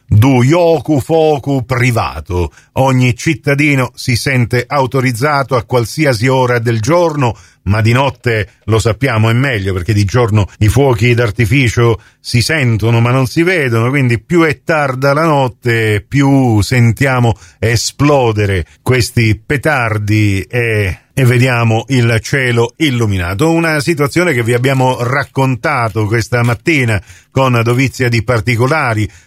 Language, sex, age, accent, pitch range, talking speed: Italian, male, 40-59, native, 115-140 Hz, 125 wpm